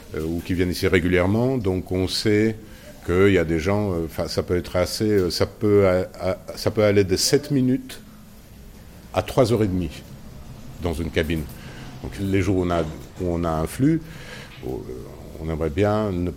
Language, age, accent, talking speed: French, 50-69, French, 170 wpm